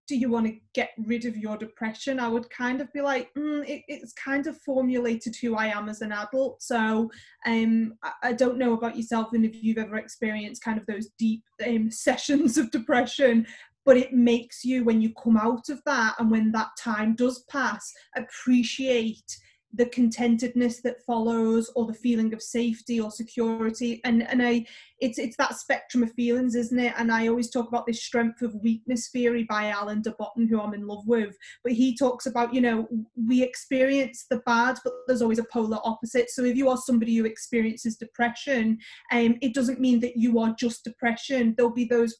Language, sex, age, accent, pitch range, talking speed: English, female, 20-39, British, 230-255 Hz, 200 wpm